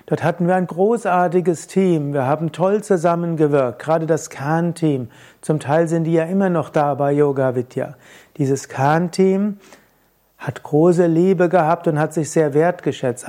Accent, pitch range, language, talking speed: German, 145-180 Hz, German, 155 wpm